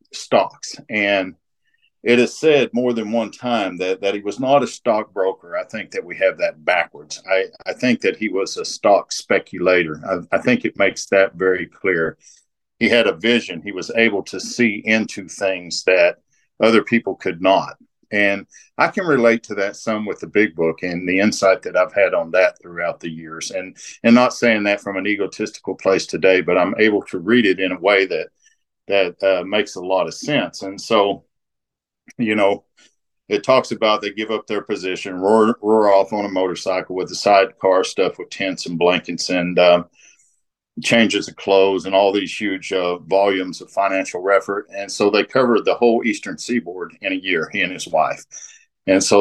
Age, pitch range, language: 50-69, 95-120 Hz, English